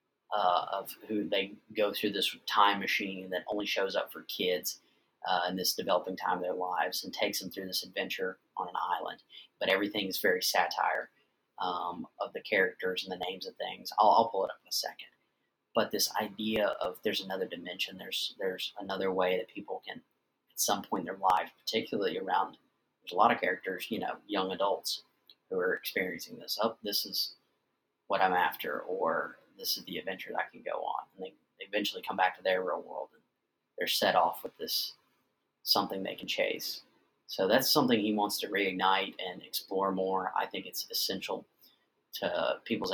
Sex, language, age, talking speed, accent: male, English, 30-49, 195 wpm, American